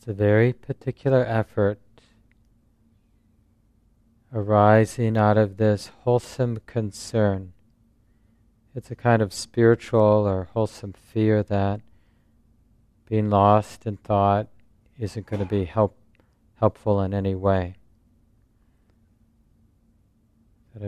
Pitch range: 100-115 Hz